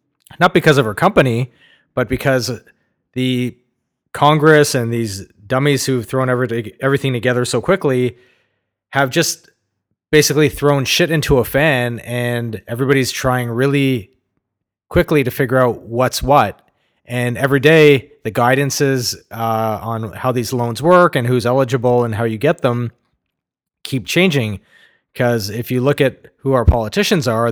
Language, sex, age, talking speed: English, male, 30-49, 145 wpm